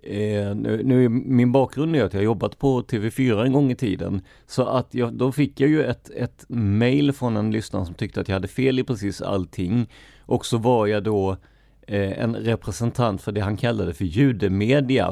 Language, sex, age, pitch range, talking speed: Swedish, male, 30-49, 100-130 Hz, 205 wpm